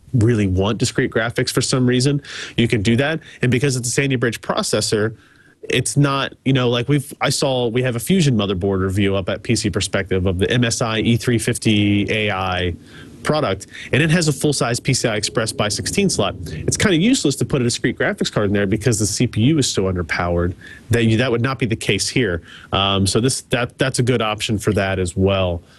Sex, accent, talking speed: male, American, 210 wpm